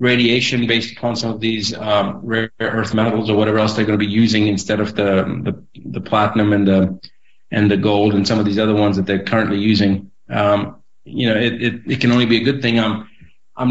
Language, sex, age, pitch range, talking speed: English, male, 40-59, 105-115 Hz, 230 wpm